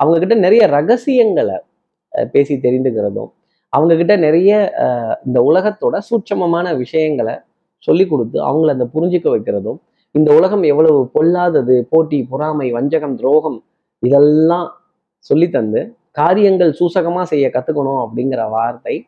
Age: 30-49